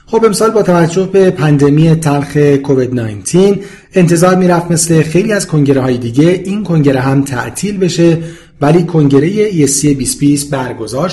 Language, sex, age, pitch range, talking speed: Persian, male, 40-59, 130-175 Hz, 150 wpm